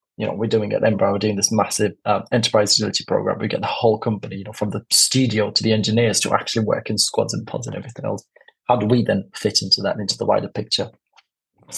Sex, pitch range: male, 105-125 Hz